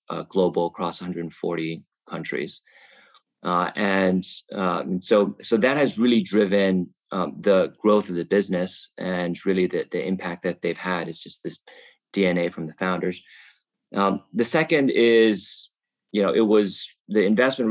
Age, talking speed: 30-49, 155 wpm